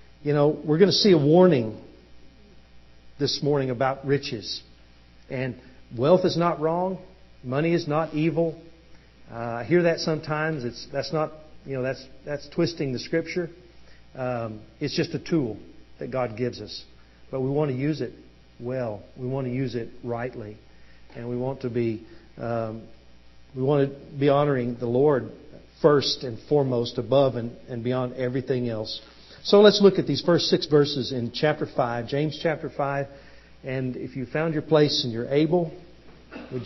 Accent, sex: American, male